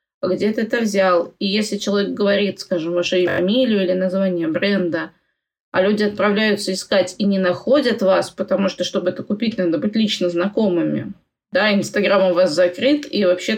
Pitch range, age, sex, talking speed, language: 185-205 Hz, 20-39, female, 170 wpm, Russian